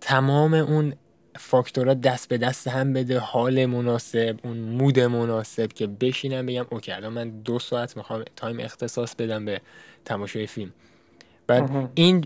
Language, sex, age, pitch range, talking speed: Persian, male, 10-29, 110-135 Hz, 145 wpm